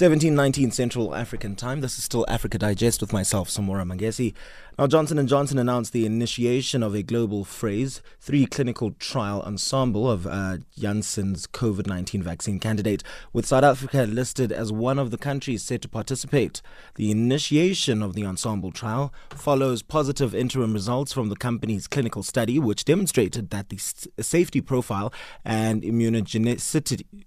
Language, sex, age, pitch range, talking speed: English, male, 20-39, 110-135 Hz, 145 wpm